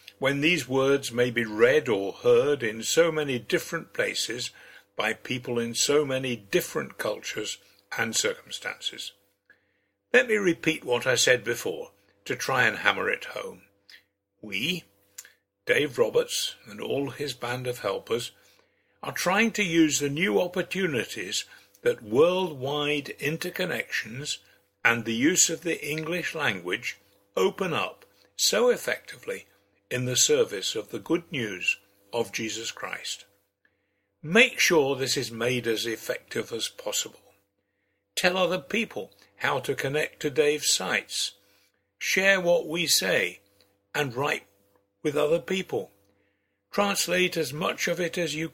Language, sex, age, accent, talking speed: English, male, 60-79, British, 135 wpm